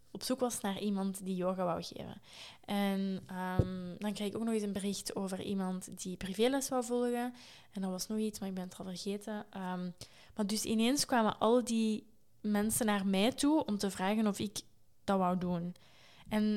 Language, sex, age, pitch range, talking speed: Dutch, female, 20-39, 190-220 Hz, 195 wpm